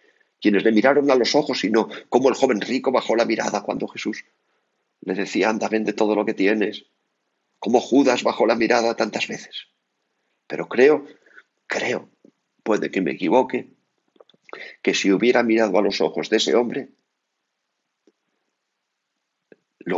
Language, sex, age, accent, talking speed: Spanish, male, 50-69, Spanish, 150 wpm